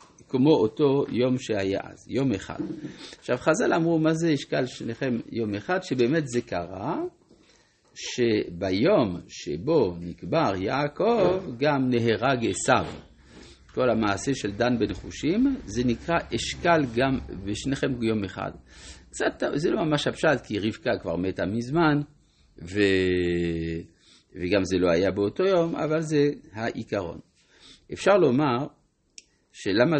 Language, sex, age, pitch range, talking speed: Hebrew, male, 50-69, 100-150 Hz, 125 wpm